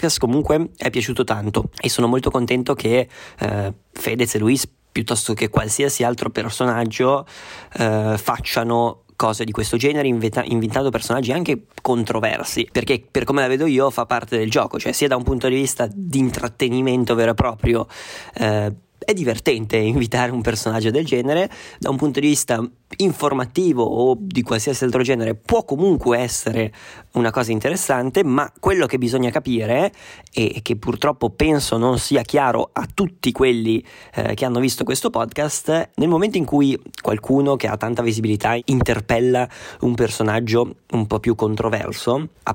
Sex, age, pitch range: male, 20-39, 115-135 Hz